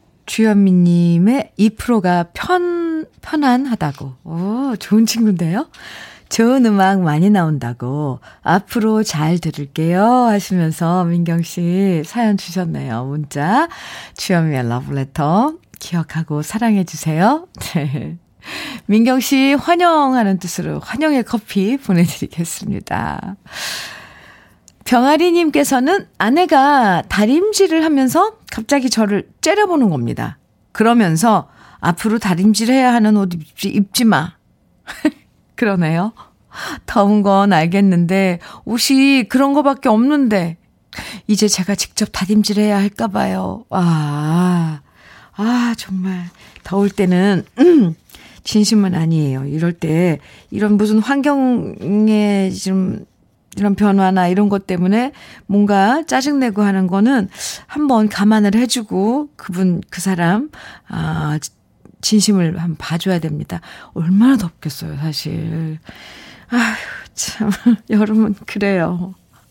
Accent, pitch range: native, 170-235 Hz